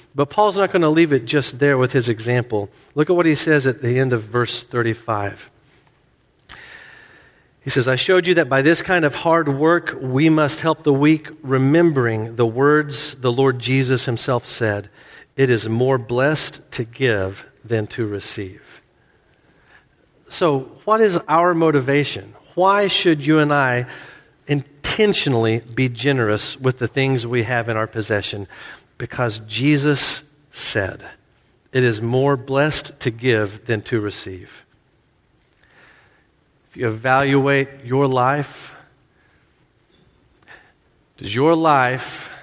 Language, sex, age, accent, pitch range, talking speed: English, male, 50-69, American, 115-150 Hz, 140 wpm